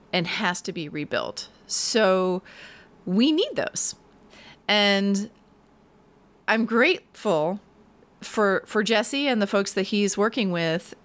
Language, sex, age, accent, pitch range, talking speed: English, female, 30-49, American, 195-255 Hz, 120 wpm